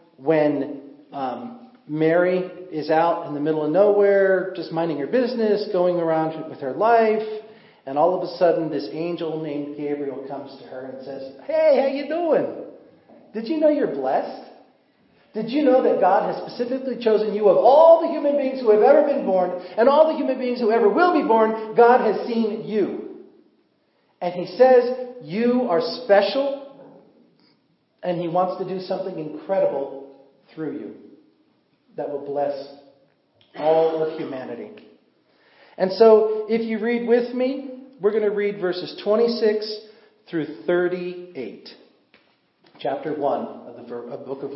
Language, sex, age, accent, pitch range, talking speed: English, male, 40-59, American, 160-240 Hz, 160 wpm